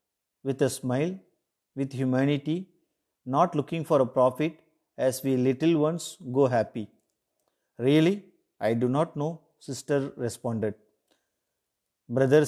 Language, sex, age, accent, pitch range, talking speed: Tamil, male, 50-69, native, 125-155 Hz, 115 wpm